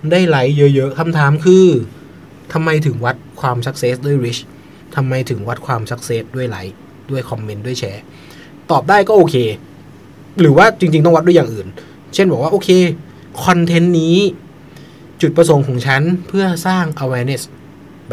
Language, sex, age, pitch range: Thai, male, 20-39, 125-165 Hz